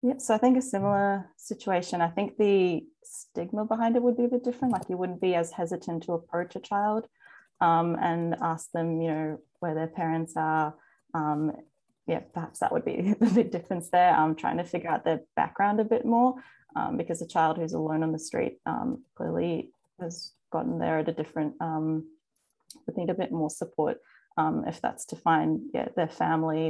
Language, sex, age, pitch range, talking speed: English, female, 20-39, 160-215 Hz, 200 wpm